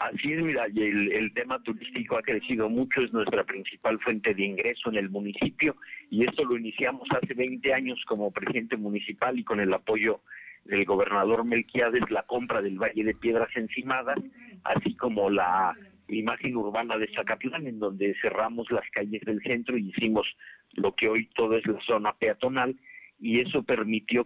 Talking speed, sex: 180 wpm, male